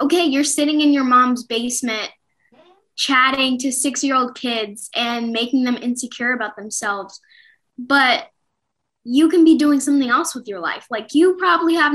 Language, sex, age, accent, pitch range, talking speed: English, female, 10-29, American, 225-285 Hz, 155 wpm